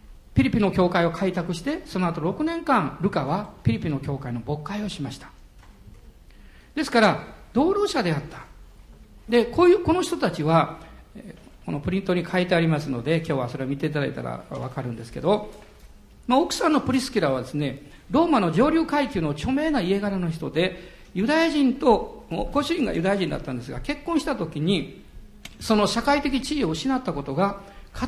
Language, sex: Japanese, male